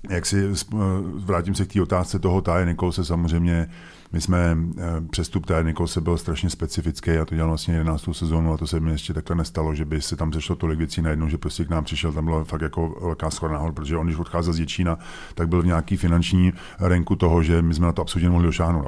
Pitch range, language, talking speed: 80-90 Hz, Czech, 235 wpm